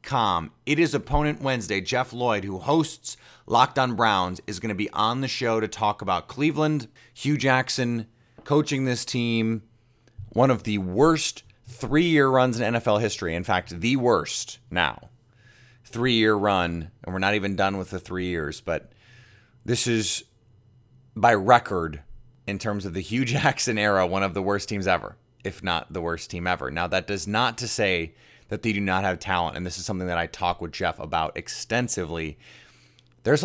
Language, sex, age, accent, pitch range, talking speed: English, male, 30-49, American, 100-125 Hz, 180 wpm